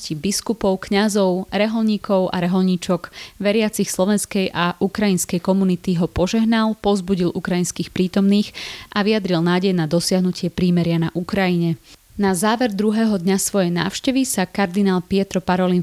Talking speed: 125 wpm